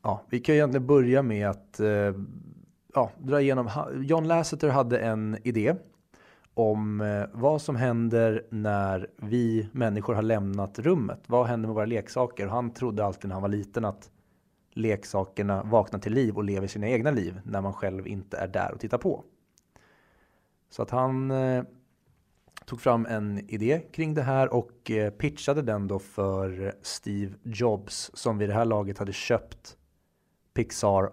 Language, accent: Swedish, native